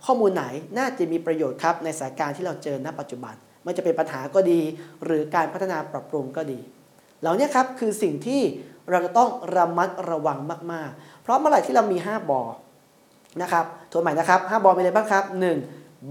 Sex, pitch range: male, 150-185 Hz